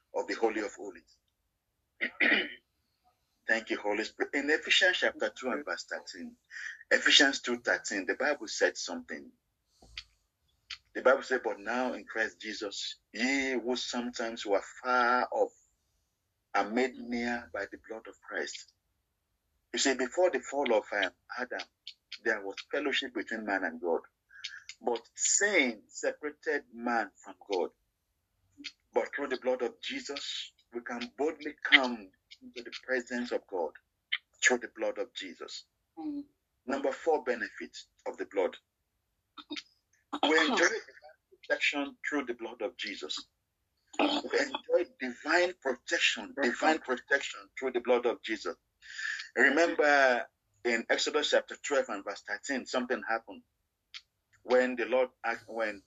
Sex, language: male, English